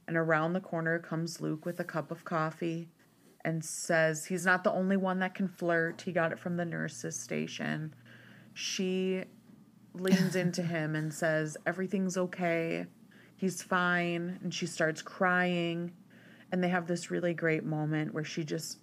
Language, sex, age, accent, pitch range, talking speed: English, female, 30-49, American, 155-185 Hz, 165 wpm